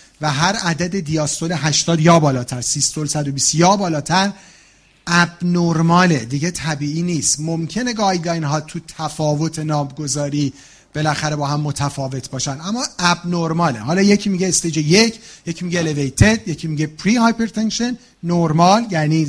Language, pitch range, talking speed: Persian, 145-195 Hz, 130 wpm